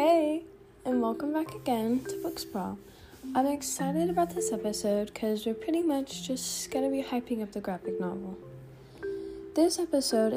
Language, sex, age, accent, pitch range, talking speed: English, female, 10-29, American, 180-270 Hz, 155 wpm